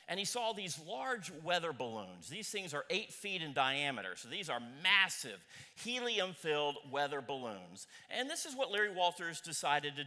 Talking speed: 175 wpm